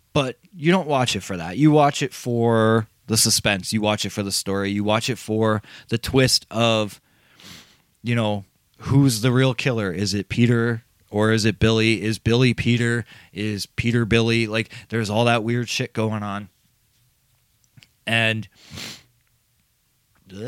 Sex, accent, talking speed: male, American, 160 wpm